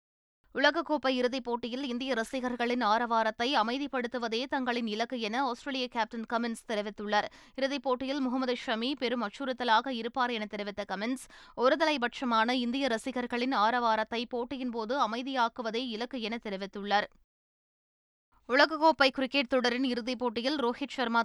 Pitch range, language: 225-260 Hz, Tamil